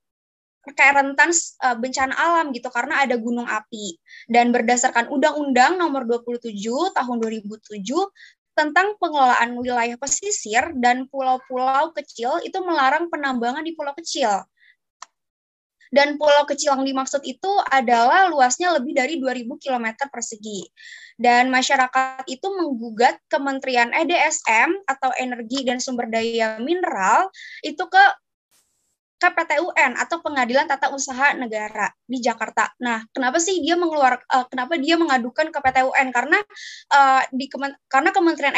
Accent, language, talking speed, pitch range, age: native, Indonesian, 120 wpm, 250-325 Hz, 20-39